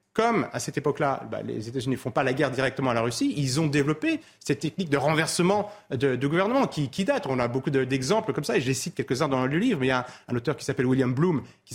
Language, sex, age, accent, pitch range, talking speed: French, male, 30-49, French, 135-185 Hz, 280 wpm